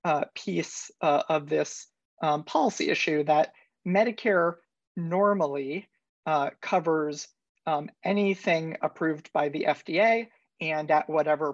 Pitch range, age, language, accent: 155-190 Hz, 40-59, English, American